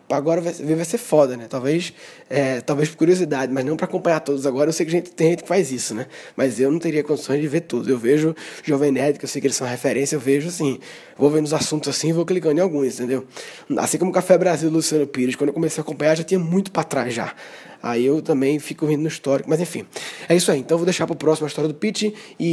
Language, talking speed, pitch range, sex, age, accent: Portuguese, 270 wpm, 145-170 Hz, male, 20-39, Brazilian